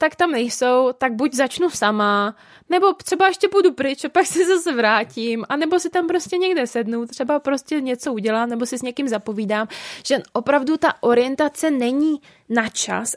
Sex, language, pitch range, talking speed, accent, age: female, Czech, 220-275 Hz, 180 wpm, native, 20-39